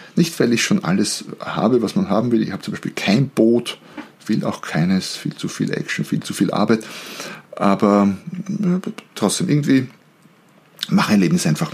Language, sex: German, male